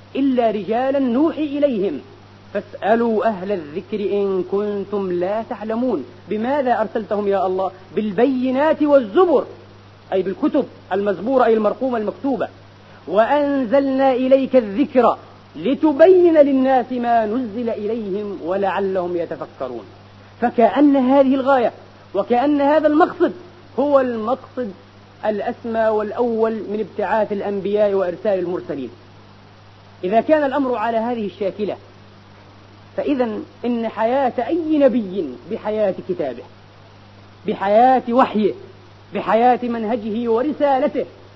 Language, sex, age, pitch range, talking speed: Arabic, female, 40-59, 185-250 Hz, 95 wpm